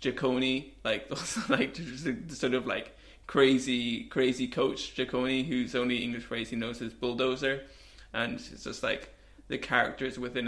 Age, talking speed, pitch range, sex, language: 20-39, 145 wpm, 120-130 Hz, male, English